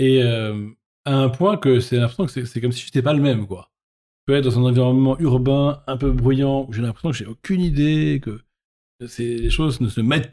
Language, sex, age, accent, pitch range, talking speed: French, male, 40-59, French, 115-140 Hz, 240 wpm